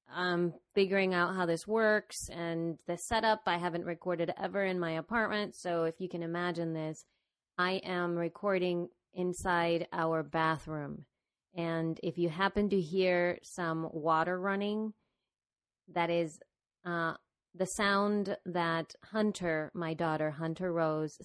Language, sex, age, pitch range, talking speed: English, female, 30-49, 170-200 Hz, 135 wpm